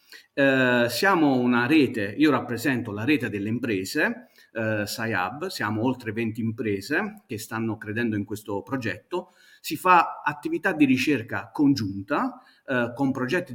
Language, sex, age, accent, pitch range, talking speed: Italian, male, 40-59, native, 105-130 Hz, 135 wpm